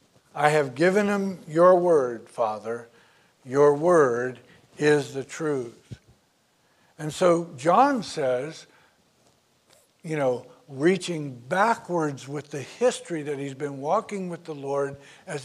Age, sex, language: 60-79, male, English